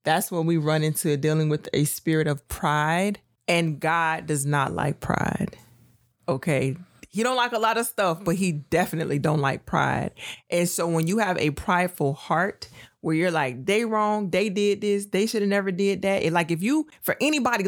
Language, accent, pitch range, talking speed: English, American, 150-195 Hz, 195 wpm